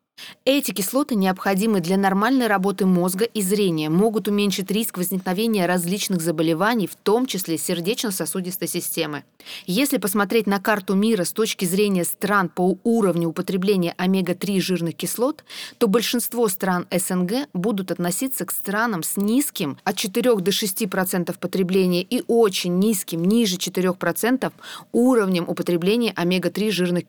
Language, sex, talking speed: English, female, 130 wpm